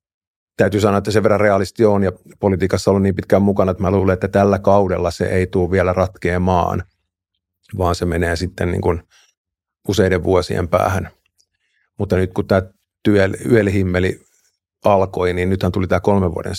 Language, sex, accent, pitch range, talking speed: Finnish, male, native, 90-100 Hz, 165 wpm